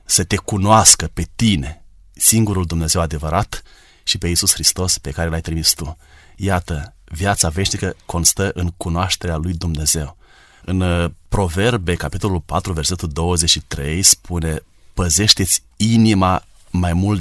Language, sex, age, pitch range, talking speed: Romanian, male, 30-49, 85-95 Hz, 125 wpm